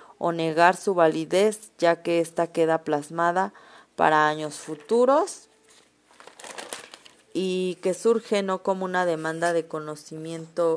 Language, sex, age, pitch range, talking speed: Spanish, female, 30-49, 155-180 Hz, 115 wpm